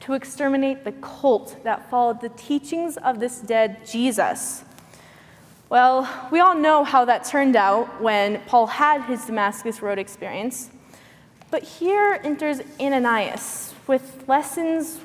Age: 20-39